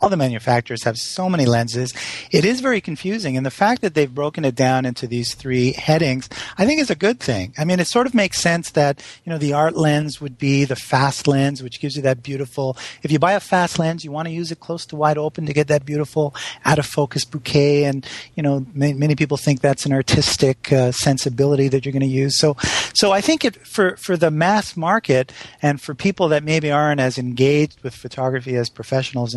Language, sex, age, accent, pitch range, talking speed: English, male, 40-59, American, 130-165 Hz, 230 wpm